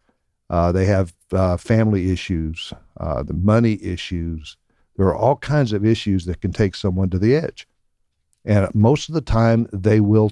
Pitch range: 95-115 Hz